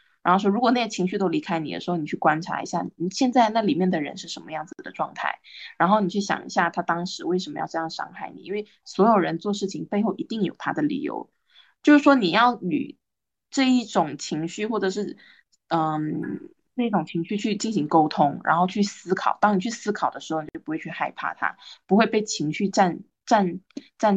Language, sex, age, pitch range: Chinese, female, 20-39, 170-215 Hz